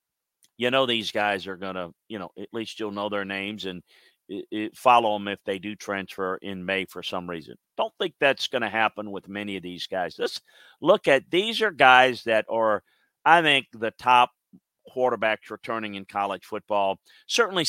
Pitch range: 100-125 Hz